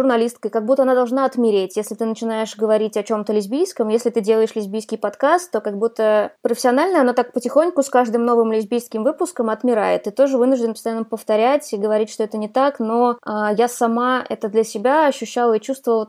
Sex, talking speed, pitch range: female, 195 wpm, 220-265 Hz